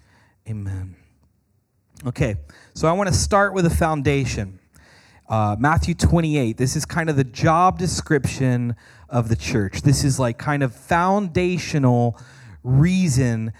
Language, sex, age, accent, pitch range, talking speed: English, male, 30-49, American, 110-160 Hz, 130 wpm